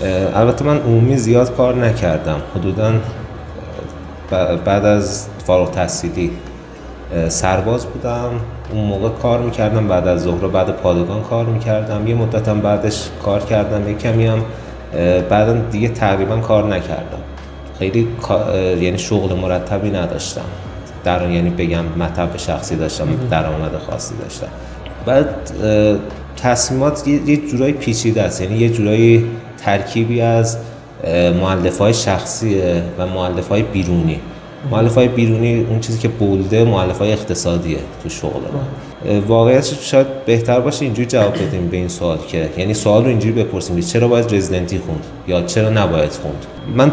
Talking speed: 130 wpm